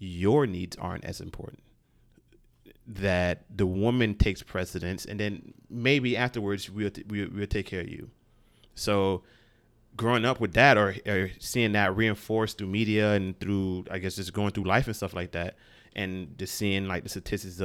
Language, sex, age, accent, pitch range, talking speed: English, male, 30-49, American, 90-105 Hz, 175 wpm